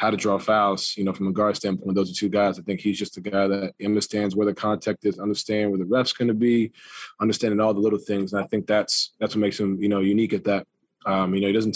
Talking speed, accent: 285 wpm, American